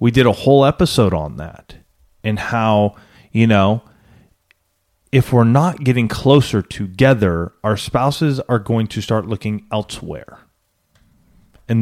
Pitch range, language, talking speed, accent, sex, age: 110-140 Hz, English, 130 wpm, American, male, 30-49